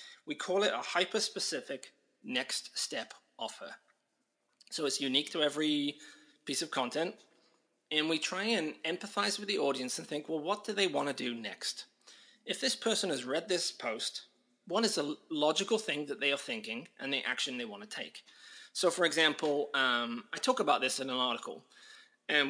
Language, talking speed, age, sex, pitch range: English, 185 wpm, 30-49, male, 135-205 Hz